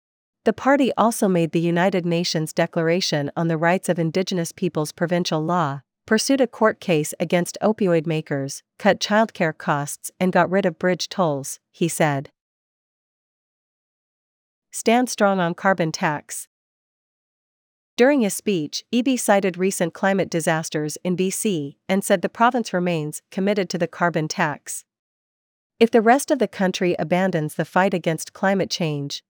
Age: 40-59